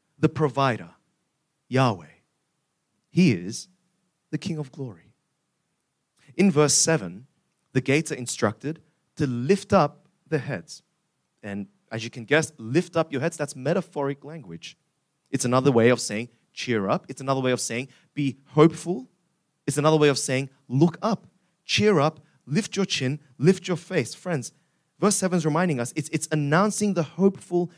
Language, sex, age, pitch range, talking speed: English, male, 30-49, 140-185 Hz, 160 wpm